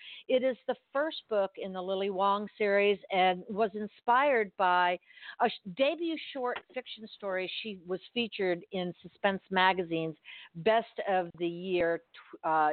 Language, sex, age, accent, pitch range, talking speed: English, female, 50-69, American, 185-235 Hz, 140 wpm